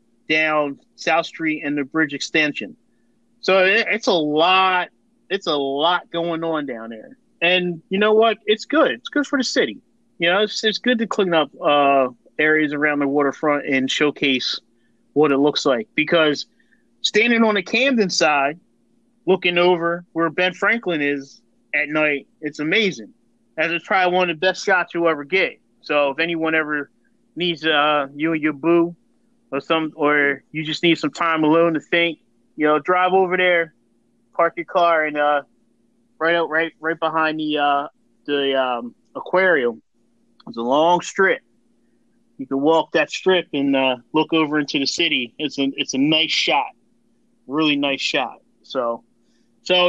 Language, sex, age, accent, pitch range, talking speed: English, male, 30-49, American, 145-190 Hz, 170 wpm